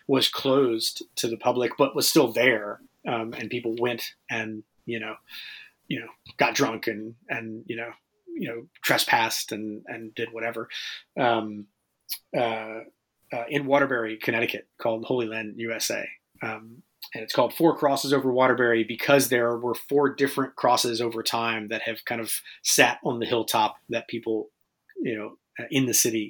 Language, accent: English, American